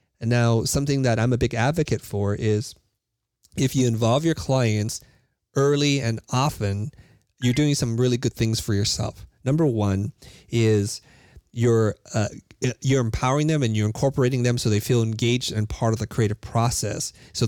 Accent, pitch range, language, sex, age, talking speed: American, 110-130 Hz, English, male, 30-49, 170 wpm